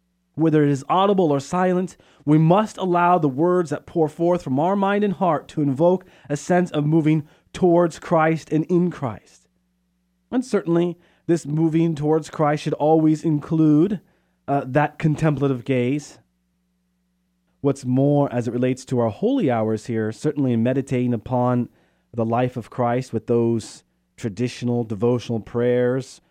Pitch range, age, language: 125-165 Hz, 30-49, English